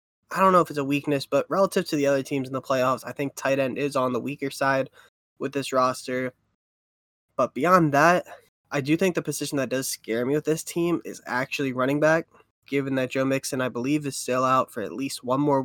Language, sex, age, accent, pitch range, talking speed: English, male, 10-29, American, 130-150 Hz, 235 wpm